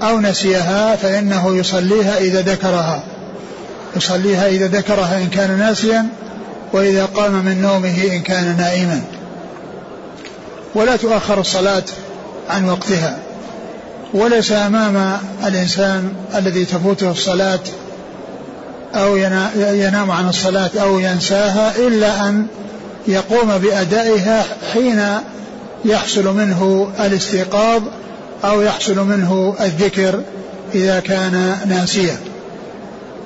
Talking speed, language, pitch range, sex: 90 wpm, Arabic, 190-210 Hz, male